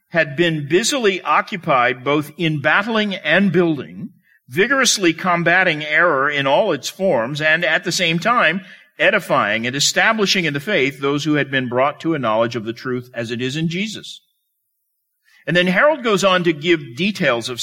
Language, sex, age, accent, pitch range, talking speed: English, male, 50-69, American, 130-185 Hz, 175 wpm